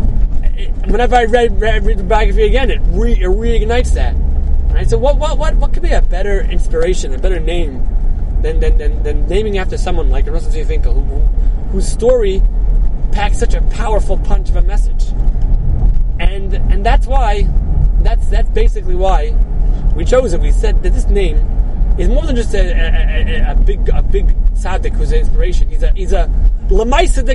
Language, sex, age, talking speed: English, male, 30-49, 185 wpm